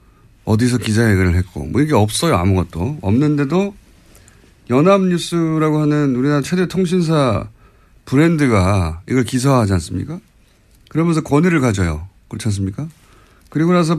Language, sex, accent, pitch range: Korean, male, native, 105-160 Hz